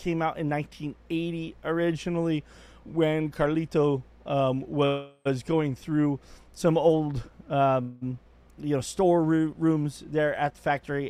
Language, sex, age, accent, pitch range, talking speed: English, male, 30-49, American, 125-155 Hz, 125 wpm